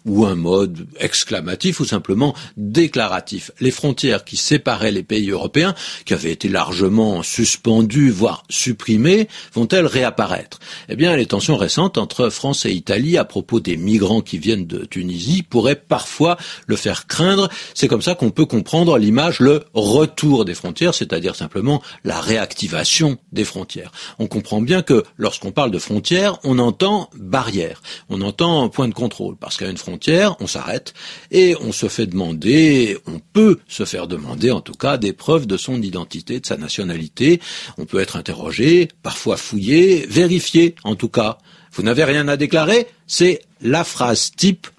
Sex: male